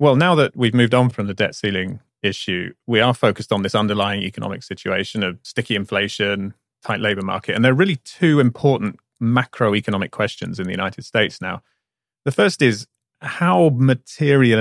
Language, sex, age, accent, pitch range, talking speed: English, male, 30-49, British, 105-130 Hz, 175 wpm